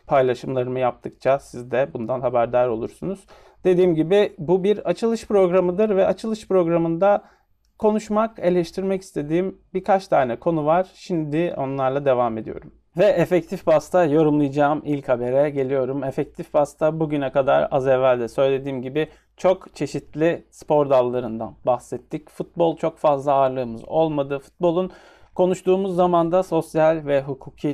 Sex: male